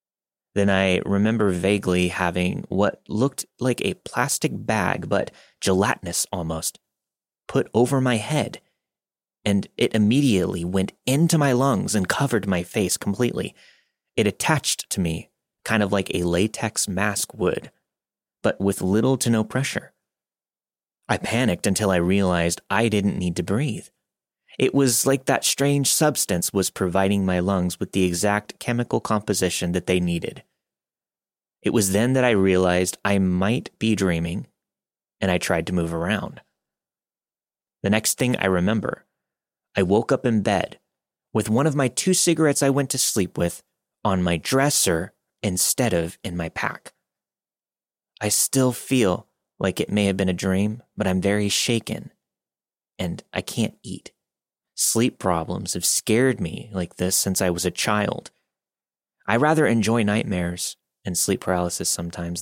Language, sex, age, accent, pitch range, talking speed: English, male, 30-49, American, 90-130 Hz, 150 wpm